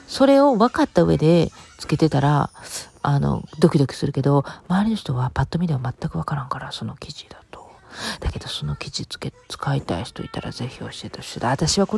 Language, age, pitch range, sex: Japanese, 40-59, 140-190 Hz, female